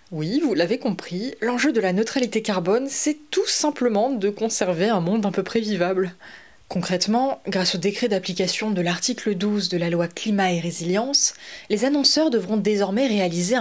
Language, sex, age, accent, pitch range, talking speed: French, female, 20-39, French, 180-230 Hz, 170 wpm